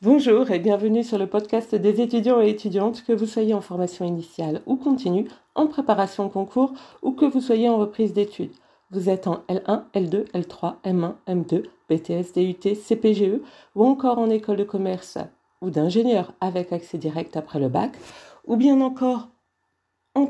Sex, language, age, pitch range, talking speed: female, French, 40-59, 180-235 Hz, 170 wpm